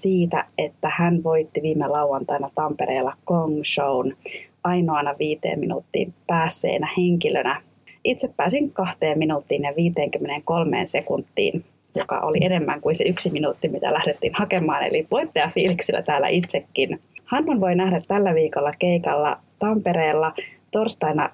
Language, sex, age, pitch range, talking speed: Finnish, female, 30-49, 150-195 Hz, 120 wpm